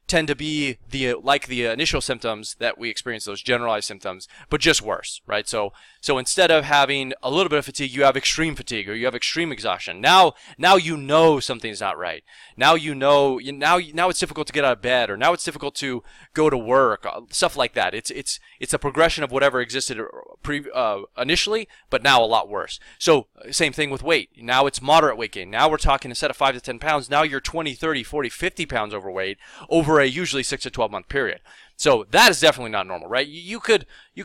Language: English